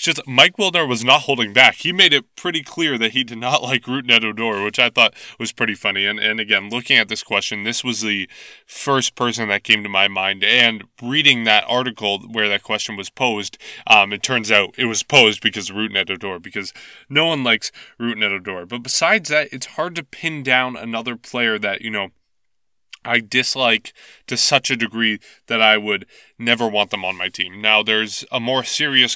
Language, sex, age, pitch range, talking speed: English, male, 20-39, 100-125 Hz, 205 wpm